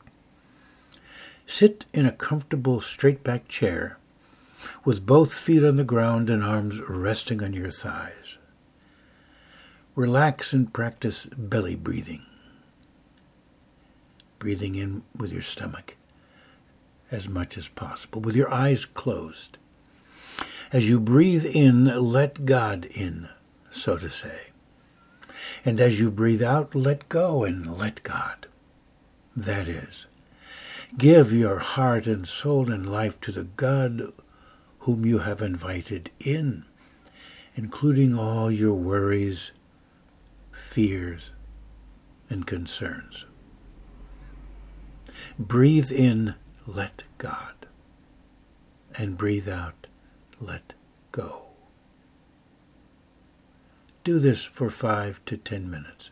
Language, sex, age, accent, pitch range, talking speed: English, male, 60-79, American, 100-130 Hz, 105 wpm